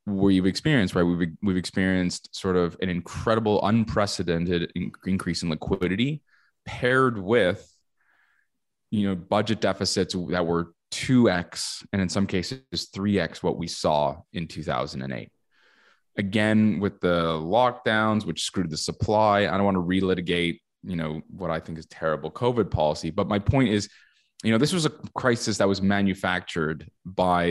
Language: English